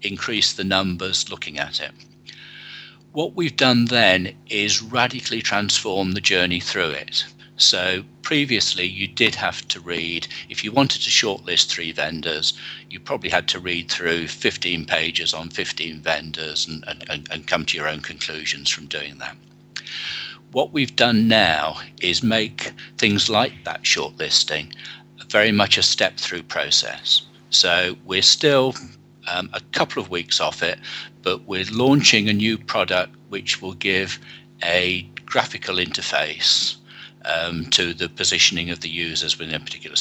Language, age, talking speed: English, 50-69, 150 wpm